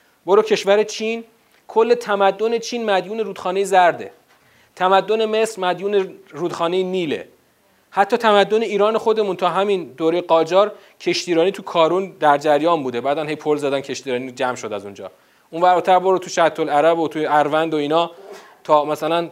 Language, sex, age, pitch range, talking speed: Persian, male, 40-59, 165-220 Hz, 150 wpm